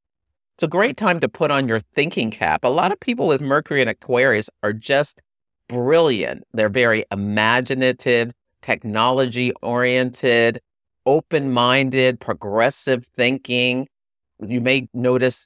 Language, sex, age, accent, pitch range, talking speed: English, male, 50-69, American, 110-135 Hz, 130 wpm